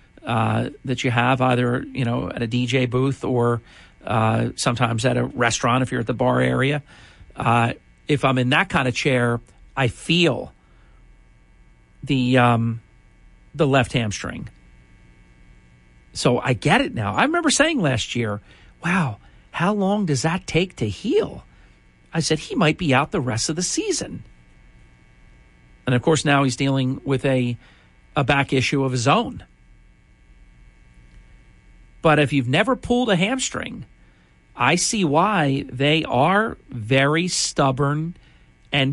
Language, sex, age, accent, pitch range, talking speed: English, male, 50-69, American, 100-150 Hz, 150 wpm